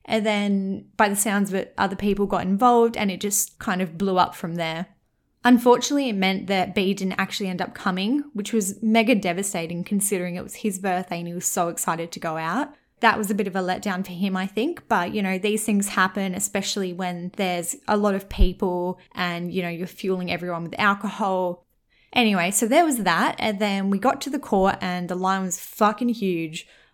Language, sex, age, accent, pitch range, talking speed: English, female, 20-39, Australian, 180-215 Hz, 215 wpm